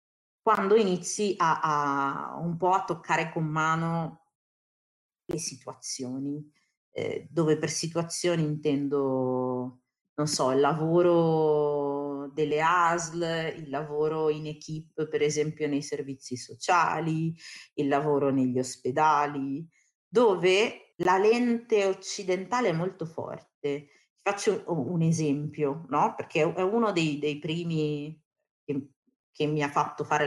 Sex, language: female, Italian